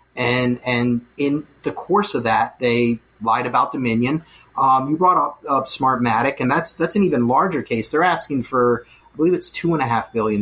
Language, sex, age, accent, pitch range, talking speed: English, male, 30-49, American, 115-155 Hz, 200 wpm